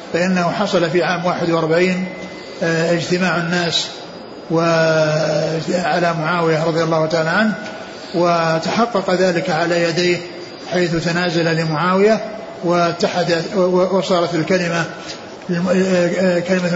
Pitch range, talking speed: 170-195 Hz, 85 wpm